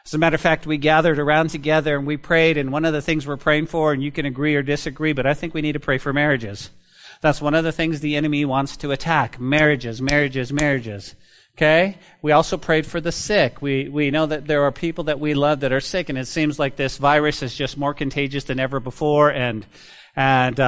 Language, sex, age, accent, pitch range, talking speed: English, male, 40-59, American, 135-160 Hz, 240 wpm